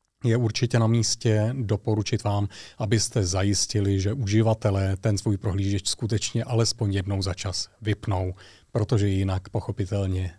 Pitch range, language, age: 100-115 Hz, Czech, 30-49